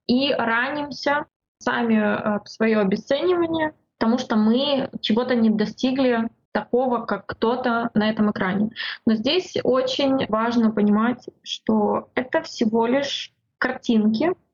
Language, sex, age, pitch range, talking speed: Russian, female, 20-39, 220-265 Hz, 115 wpm